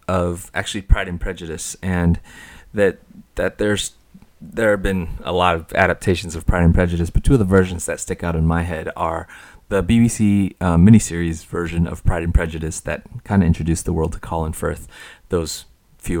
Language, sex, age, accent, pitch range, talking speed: English, male, 30-49, American, 85-100 Hz, 195 wpm